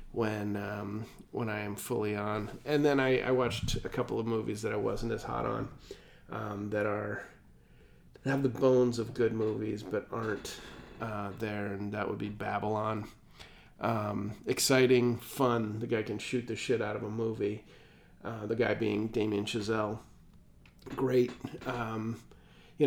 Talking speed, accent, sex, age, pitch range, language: 165 wpm, American, male, 30-49, 105-125 Hz, English